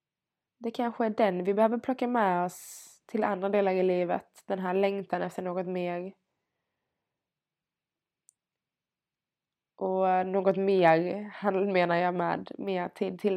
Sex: female